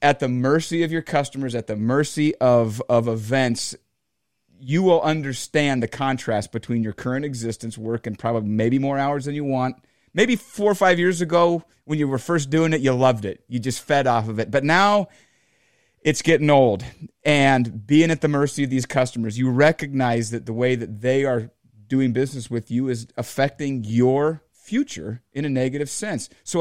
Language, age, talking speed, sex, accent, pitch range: English, 30-49, 190 wpm, male, American, 120-155 Hz